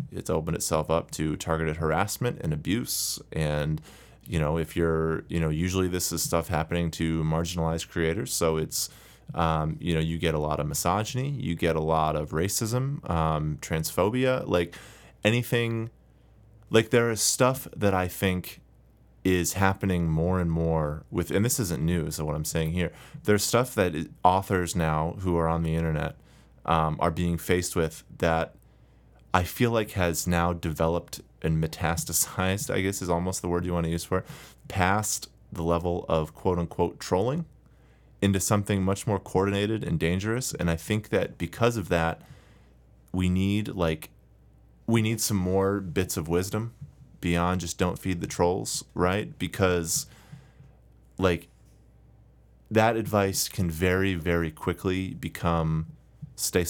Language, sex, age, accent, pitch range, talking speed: English, male, 30-49, American, 80-100 Hz, 160 wpm